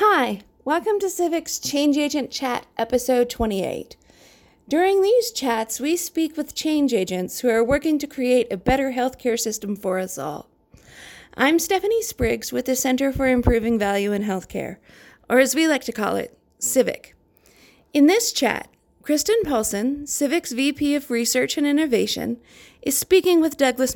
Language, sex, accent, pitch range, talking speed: English, female, American, 230-310 Hz, 160 wpm